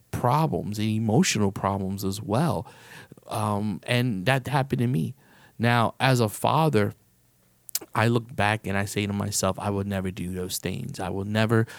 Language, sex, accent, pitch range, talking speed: English, male, American, 100-115 Hz, 170 wpm